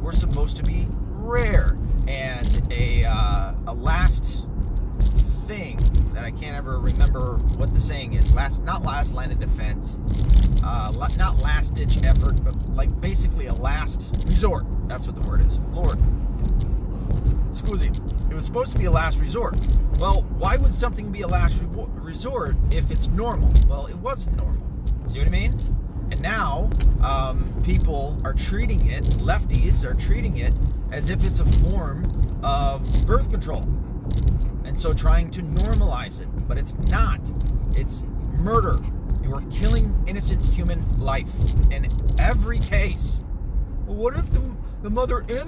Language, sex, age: English, male, 30-49